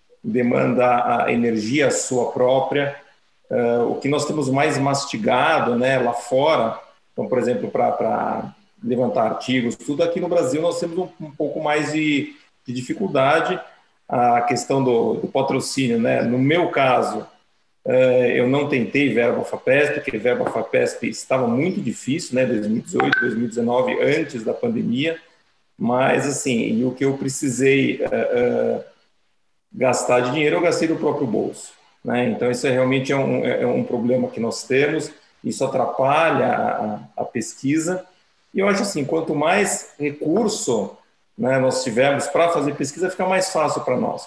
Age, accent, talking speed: 40-59, Brazilian, 155 wpm